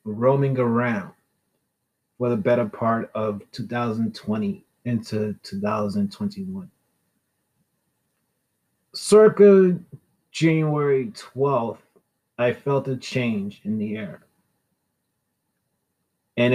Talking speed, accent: 75 wpm, American